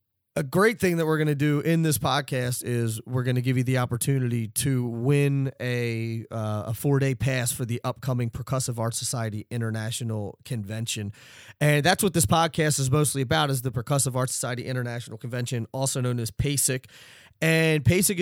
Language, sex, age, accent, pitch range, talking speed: English, male, 30-49, American, 115-140 Hz, 185 wpm